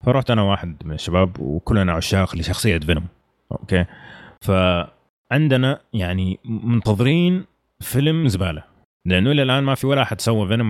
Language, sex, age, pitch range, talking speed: Arabic, male, 30-49, 90-120 Hz, 135 wpm